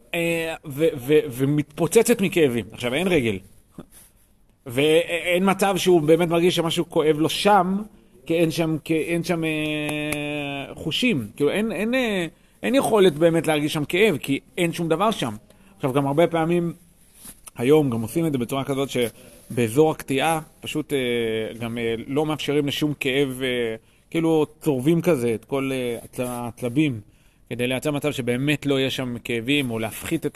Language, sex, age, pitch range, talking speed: Hebrew, male, 40-59, 120-165 Hz, 80 wpm